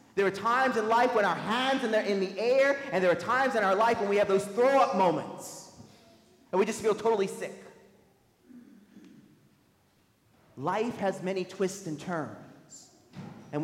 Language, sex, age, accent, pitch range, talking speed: English, male, 30-49, American, 170-215 Hz, 165 wpm